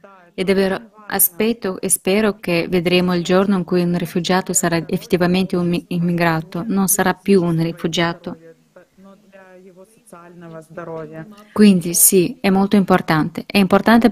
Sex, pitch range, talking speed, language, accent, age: female, 175-200 Hz, 125 wpm, Italian, native, 20-39